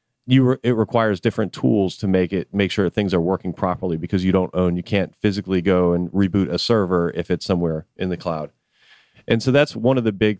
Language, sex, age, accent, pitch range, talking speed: English, male, 30-49, American, 90-110 Hz, 230 wpm